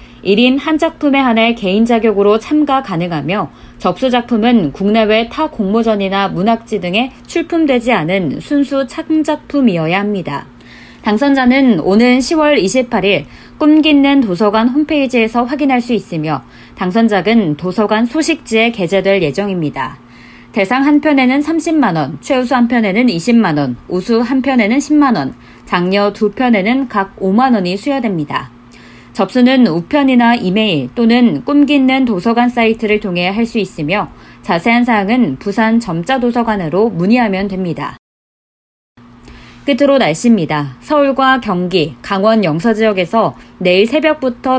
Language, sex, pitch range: Korean, female, 190-255 Hz